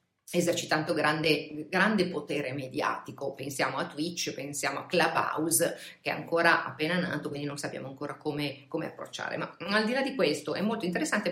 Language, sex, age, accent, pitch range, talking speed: Italian, female, 40-59, native, 155-185 Hz, 170 wpm